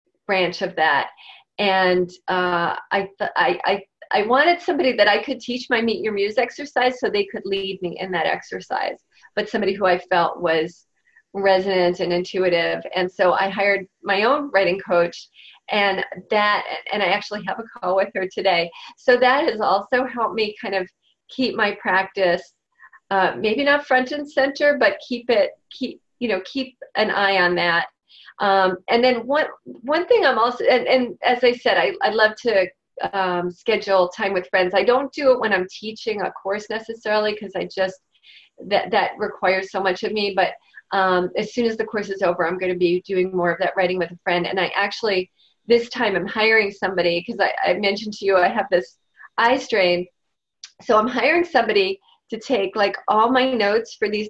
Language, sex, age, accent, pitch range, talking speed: English, female, 40-59, American, 185-240 Hz, 195 wpm